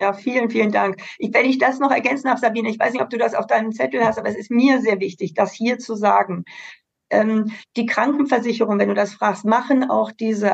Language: German